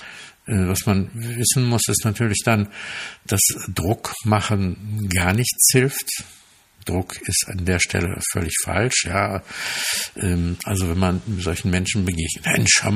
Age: 60-79